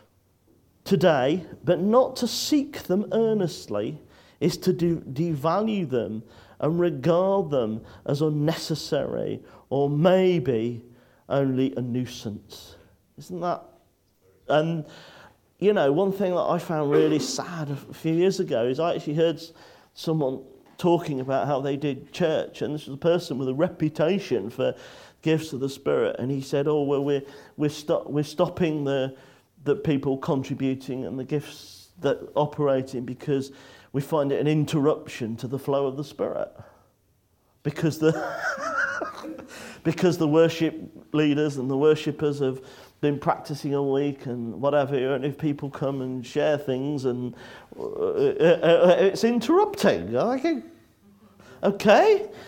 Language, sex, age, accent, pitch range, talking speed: English, male, 40-59, British, 135-175 Hz, 140 wpm